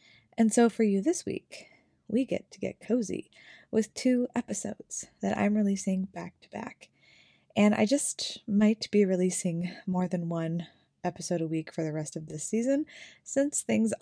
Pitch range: 170-215 Hz